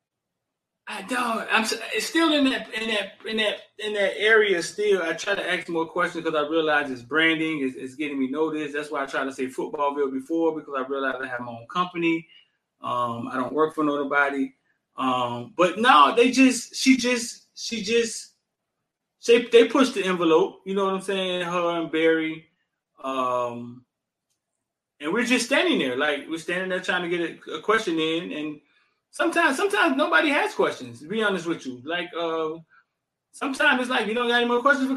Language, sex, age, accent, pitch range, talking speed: English, male, 20-39, American, 145-220 Hz, 195 wpm